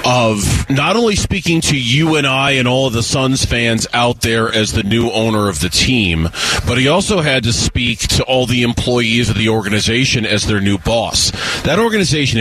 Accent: American